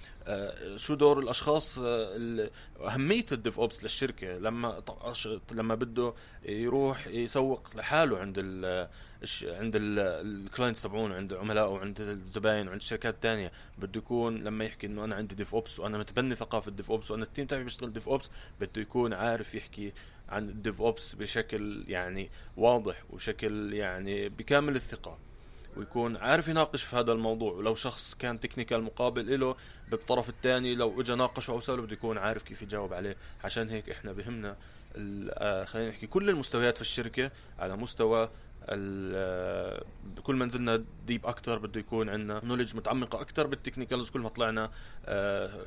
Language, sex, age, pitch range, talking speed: Arabic, male, 20-39, 105-120 Hz, 155 wpm